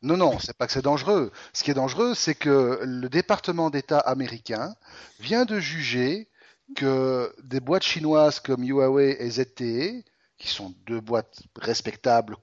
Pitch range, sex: 115-165 Hz, male